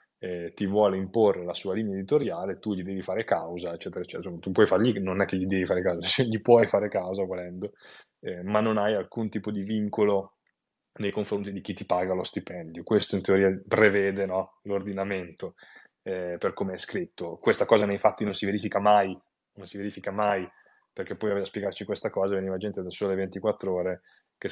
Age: 20-39